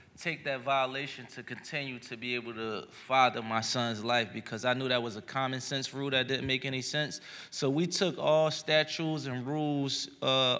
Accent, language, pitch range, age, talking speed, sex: American, English, 130-155 Hz, 20-39, 200 wpm, male